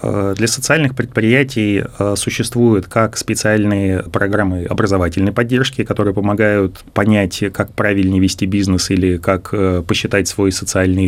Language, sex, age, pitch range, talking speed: Russian, male, 20-39, 95-110 Hz, 115 wpm